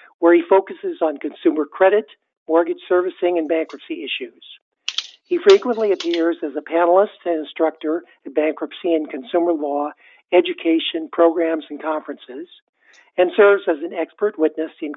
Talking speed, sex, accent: 140 wpm, male, American